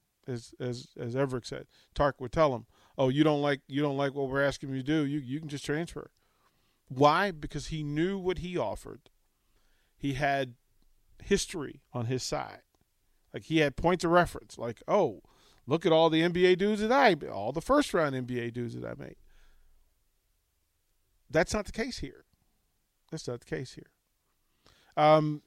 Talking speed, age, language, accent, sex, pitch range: 180 wpm, 40-59, English, American, male, 115-150 Hz